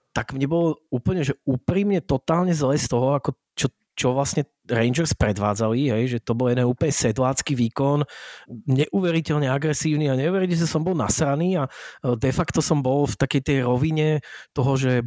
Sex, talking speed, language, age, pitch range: male, 165 wpm, Slovak, 30-49, 130-155 Hz